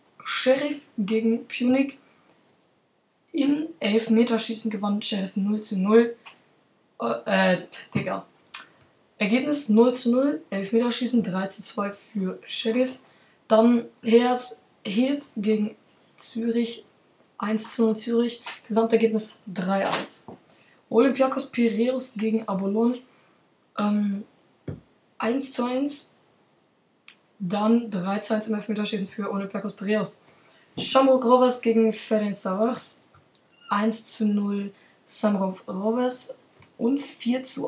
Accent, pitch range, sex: German, 200-240 Hz, female